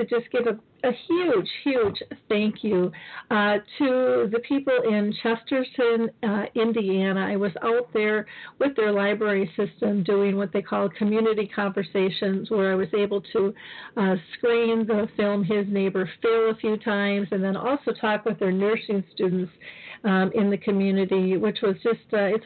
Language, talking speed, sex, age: English, 165 wpm, female, 50-69